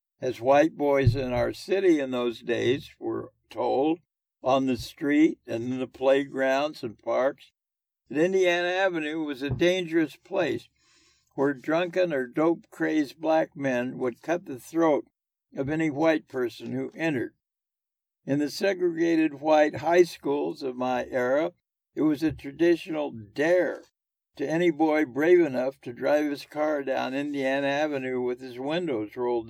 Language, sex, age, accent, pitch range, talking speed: English, male, 60-79, American, 125-160 Hz, 150 wpm